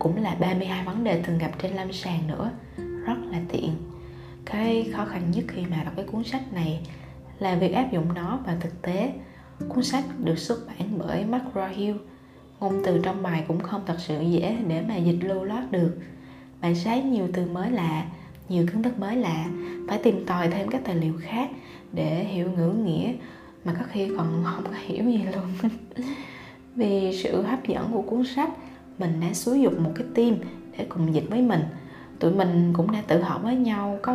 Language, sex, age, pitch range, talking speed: Vietnamese, female, 20-39, 170-220 Hz, 200 wpm